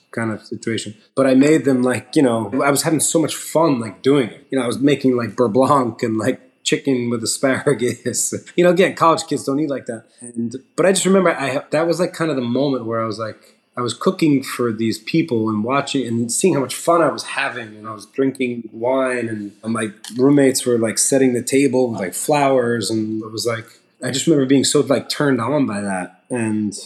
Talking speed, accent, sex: 235 wpm, American, male